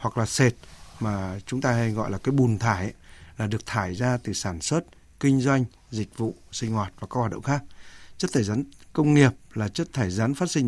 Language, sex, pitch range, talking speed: Vietnamese, male, 105-140 Hz, 235 wpm